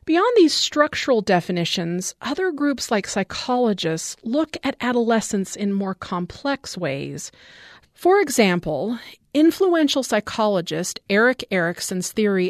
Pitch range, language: 190-270 Hz, English